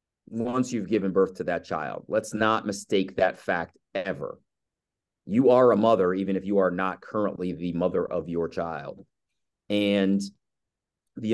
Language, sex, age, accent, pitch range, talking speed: English, male, 30-49, American, 95-130 Hz, 160 wpm